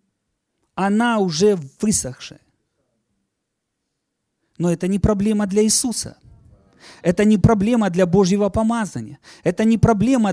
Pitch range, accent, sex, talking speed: 155-245 Hz, native, male, 105 wpm